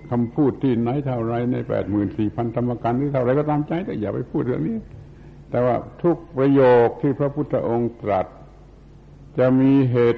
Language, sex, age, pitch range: Thai, male, 70-89, 105-130 Hz